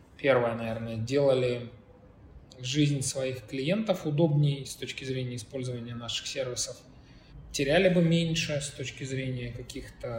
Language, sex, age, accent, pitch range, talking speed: Russian, male, 20-39, native, 125-150 Hz, 120 wpm